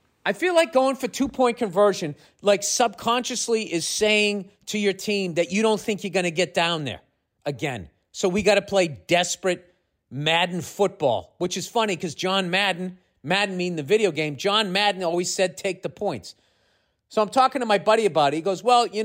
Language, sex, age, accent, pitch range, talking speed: English, male, 40-59, American, 160-215 Hz, 200 wpm